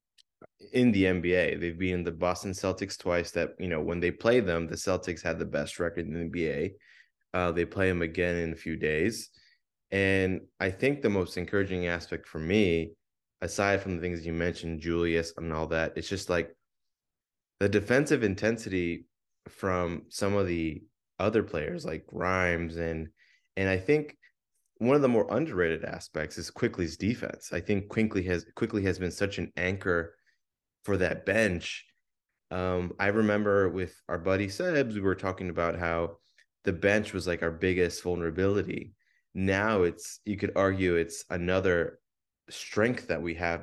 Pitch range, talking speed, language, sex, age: 85-100 Hz, 170 wpm, English, male, 20-39